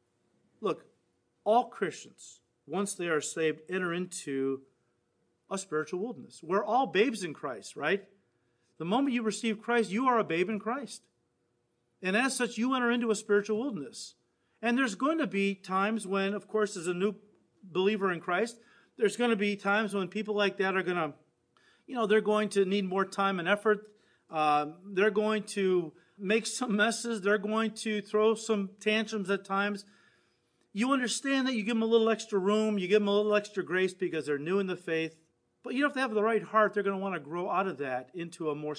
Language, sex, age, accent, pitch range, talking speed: English, male, 40-59, American, 135-215 Hz, 205 wpm